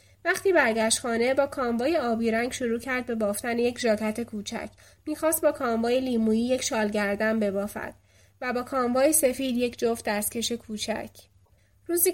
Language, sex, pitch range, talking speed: Persian, female, 220-270 Hz, 145 wpm